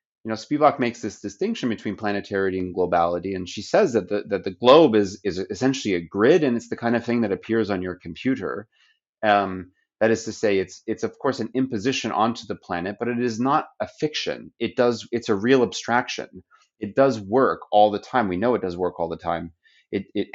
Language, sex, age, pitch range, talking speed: English, male, 30-49, 95-120 Hz, 225 wpm